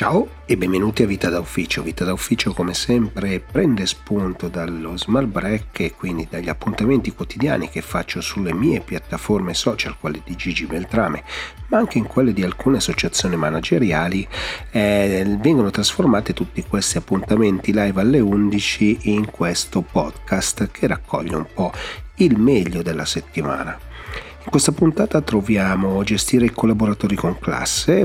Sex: male